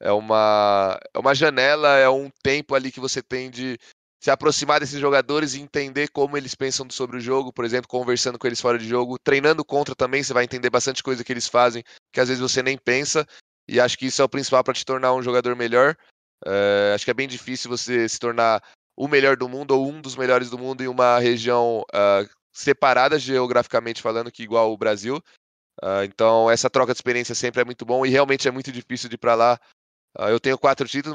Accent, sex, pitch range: Brazilian, male, 120-135 Hz